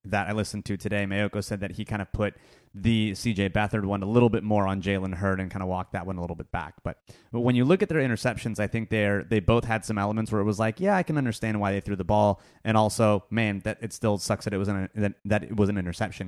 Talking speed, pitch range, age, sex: 290 wpm, 100-115 Hz, 30-49, male